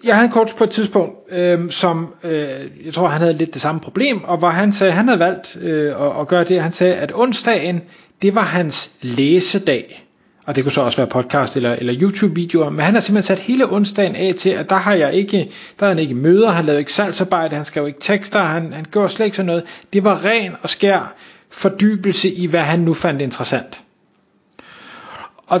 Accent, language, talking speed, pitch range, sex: native, Danish, 195 wpm, 145-190 Hz, male